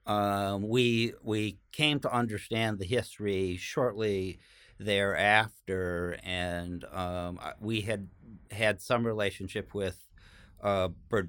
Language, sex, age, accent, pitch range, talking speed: English, male, 50-69, American, 90-110 Hz, 105 wpm